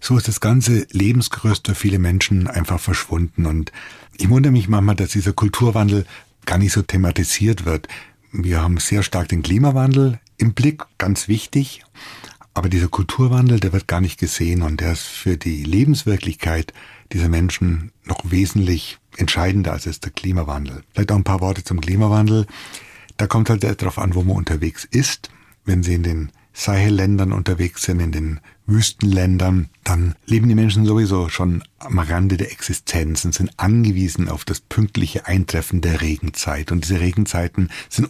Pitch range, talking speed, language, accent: 85-105 Hz, 165 wpm, German, German